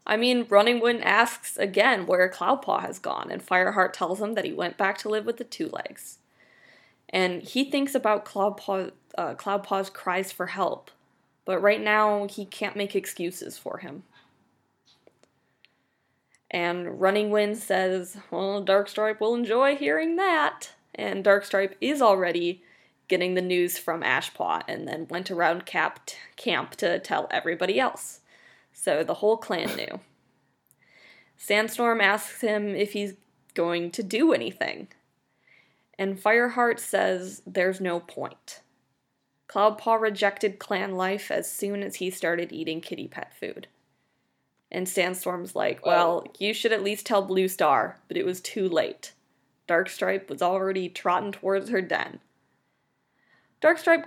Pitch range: 185-215 Hz